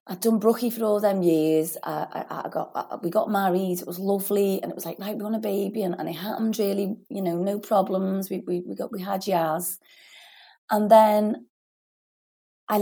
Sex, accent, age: female, British, 30-49